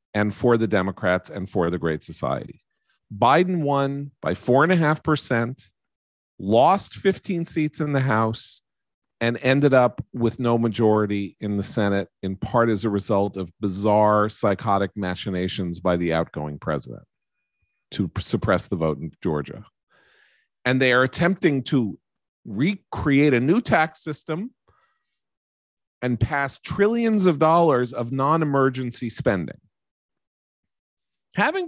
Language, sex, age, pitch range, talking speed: English, male, 40-59, 105-165 Hz, 125 wpm